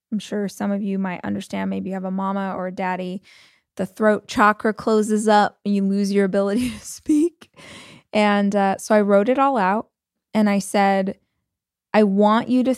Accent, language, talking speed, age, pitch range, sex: American, English, 195 wpm, 20-39, 195-230 Hz, female